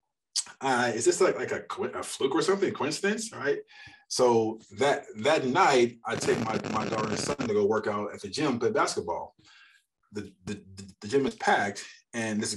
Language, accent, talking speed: English, American, 190 wpm